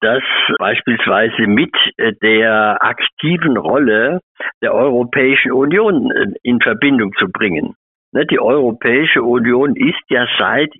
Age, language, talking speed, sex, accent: 60-79, German, 105 wpm, male, German